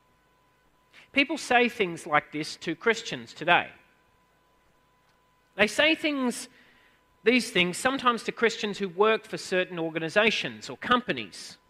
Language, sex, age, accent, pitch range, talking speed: English, male, 40-59, Australian, 165-225 Hz, 120 wpm